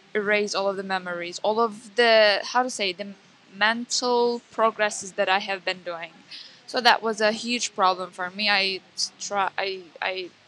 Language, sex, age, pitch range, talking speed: English, female, 10-29, 185-215 Hz, 160 wpm